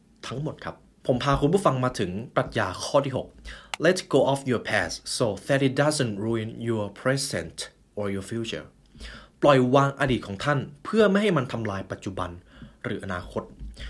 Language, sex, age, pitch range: Thai, male, 20-39, 100-145 Hz